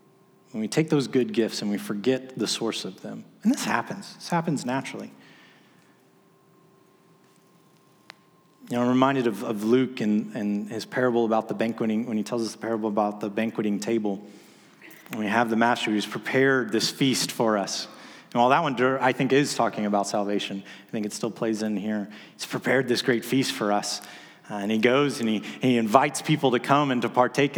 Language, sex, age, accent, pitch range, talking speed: English, male, 30-49, American, 105-130 Hz, 200 wpm